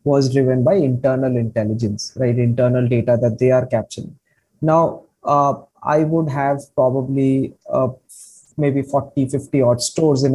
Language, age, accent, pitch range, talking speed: English, 20-39, Indian, 125-145 Hz, 145 wpm